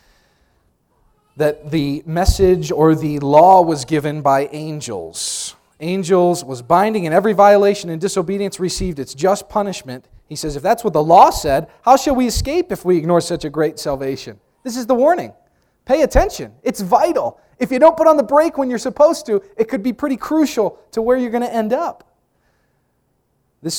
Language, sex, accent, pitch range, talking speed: English, male, American, 130-205 Hz, 185 wpm